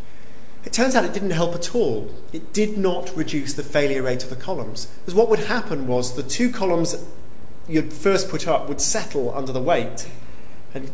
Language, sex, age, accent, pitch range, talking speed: English, male, 40-59, British, 130-180 Hz, 195 wpm